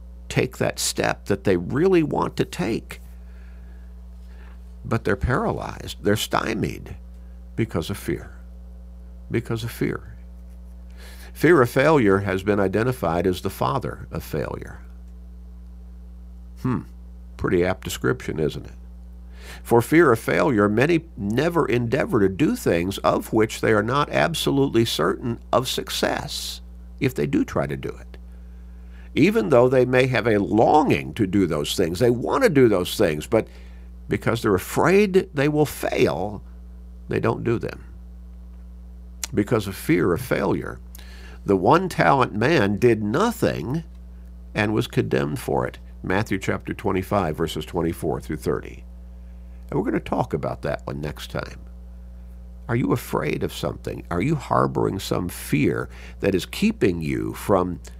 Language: English